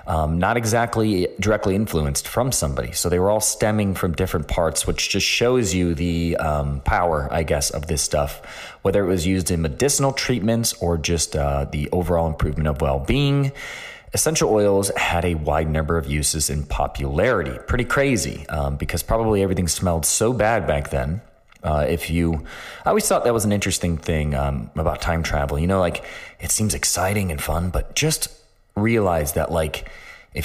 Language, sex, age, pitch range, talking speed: English, male, 30-49, 75-100 Hz, 185 wpm